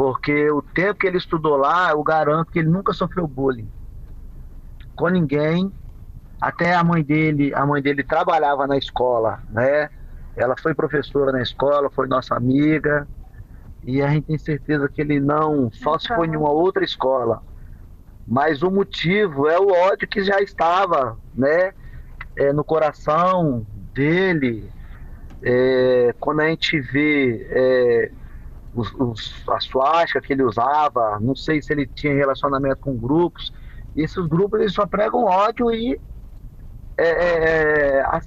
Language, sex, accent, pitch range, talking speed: Portuguese, male, Brazilian, 125-165 Hz, 140 wpm